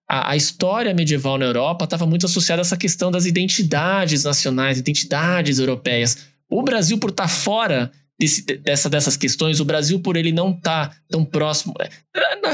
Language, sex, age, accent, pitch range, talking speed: Portuguese, male, 20-39, Brazilian, 145-200 Hz, 170 wpm